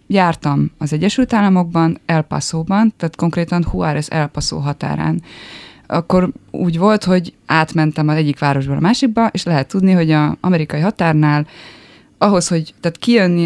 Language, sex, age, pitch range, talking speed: Hungarian, female, 20-39, 150-185 Hz, 145 wpm